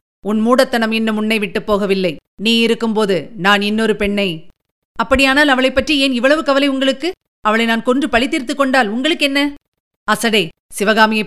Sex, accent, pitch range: female, native, 200-230 Hz